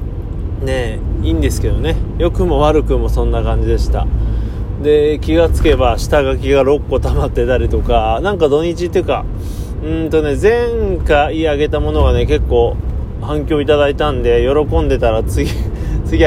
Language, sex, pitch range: Japanese, male, 100-140 Hz